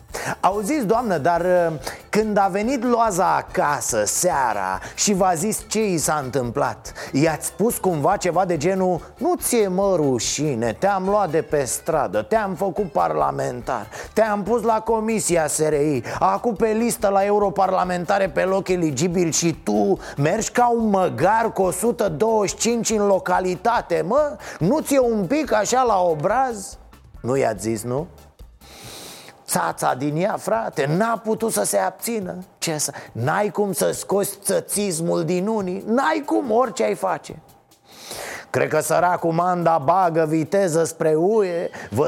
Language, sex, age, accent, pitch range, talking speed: Romanian, male, 30-49, native, 165-220 Hz, 145 wpm